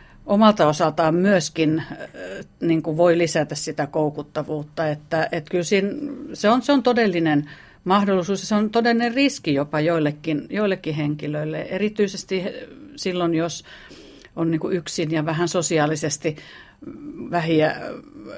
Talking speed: 125 wpm